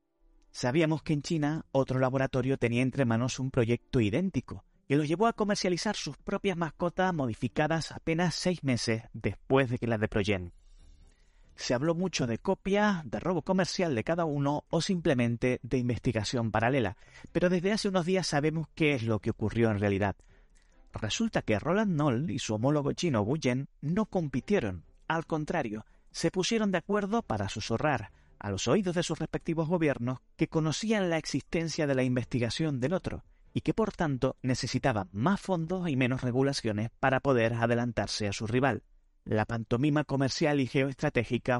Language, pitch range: Spanish, 115-170 Hz